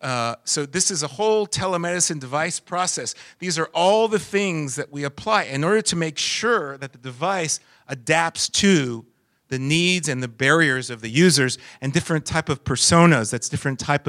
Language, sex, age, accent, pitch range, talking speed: English, male, 40-59, American, 125-160 Hz, 185 wpm